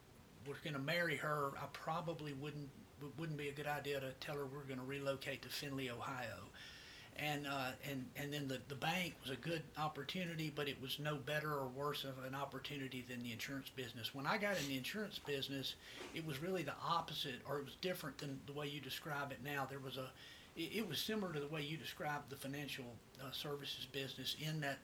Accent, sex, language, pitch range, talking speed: American, male, English, 130-150 Hz, 220 wpm